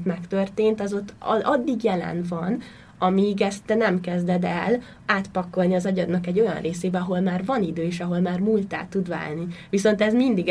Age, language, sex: 20-39, Hungarian, female